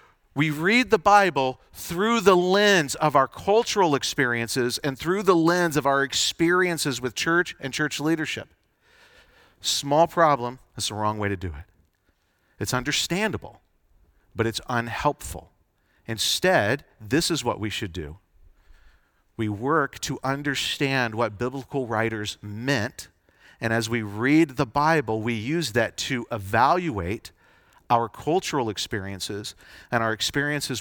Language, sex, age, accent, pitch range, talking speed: English, male, 40-59, American, 105-150 Hz, 135 wpm